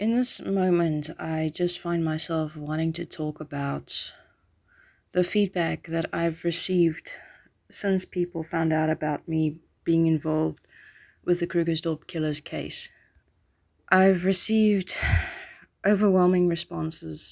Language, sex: English, female